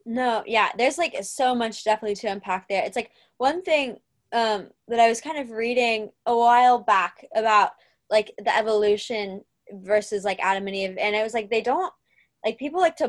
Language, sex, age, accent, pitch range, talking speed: English, female, 10-29, American, 195-230 Hz, 195 wpm